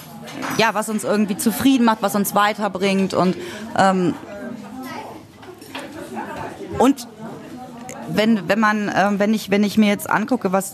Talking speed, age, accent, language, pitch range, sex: 135 wpm, 30-49, German, German, 175-225 Hz, female